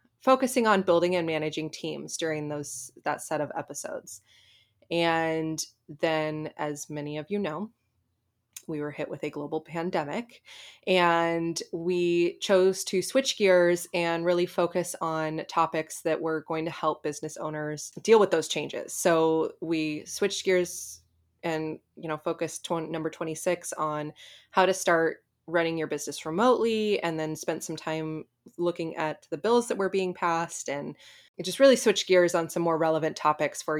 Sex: female